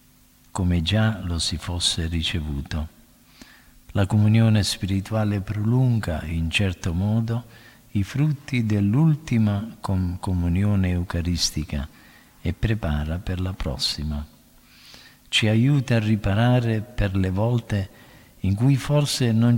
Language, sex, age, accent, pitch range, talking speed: Italian, male, 50-69, native, 85-115 Hz, 105 wpm